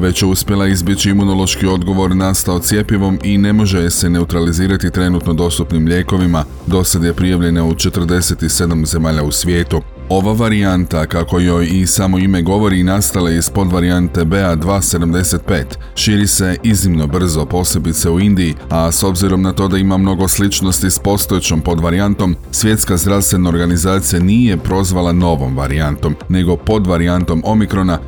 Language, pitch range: Croatian, 85-95 Hz